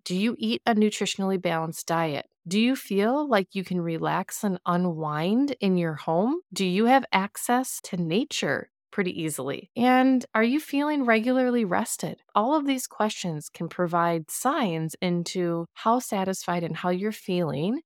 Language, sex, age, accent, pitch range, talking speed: English, female, 20-39, American, 180-240 Hz, 160 wpm